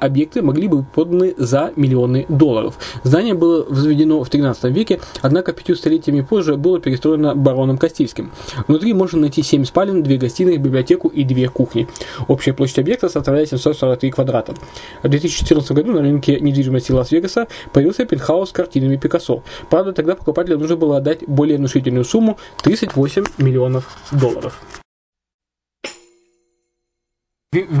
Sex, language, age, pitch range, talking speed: male, Russian, 20-39, 130-165 Hz, 140 wpm